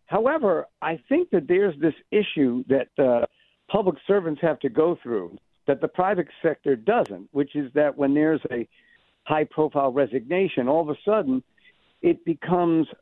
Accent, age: American, 60-79